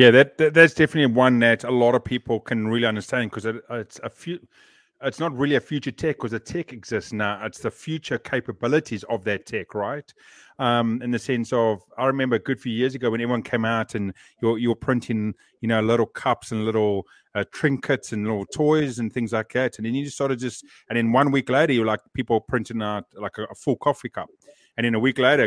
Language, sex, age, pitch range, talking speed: English, male, 30-49, 110-130 Hz, 240 wpm